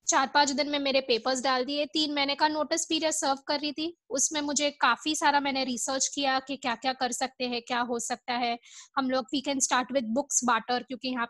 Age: 20-39